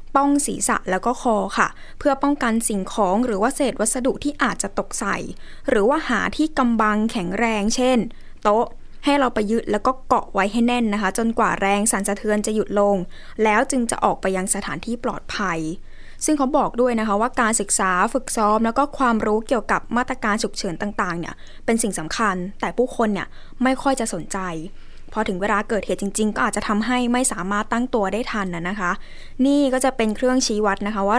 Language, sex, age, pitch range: Thai, female, 10-29, 205-250 Hz